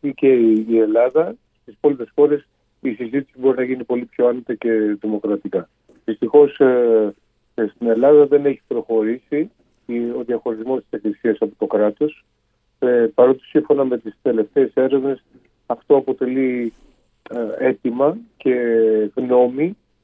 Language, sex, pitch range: Greek, male, 110-140 Hz